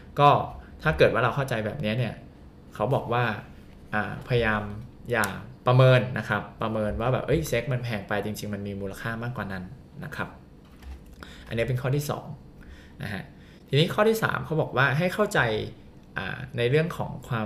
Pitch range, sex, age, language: 105-130 Hz, male, 20-39, Thai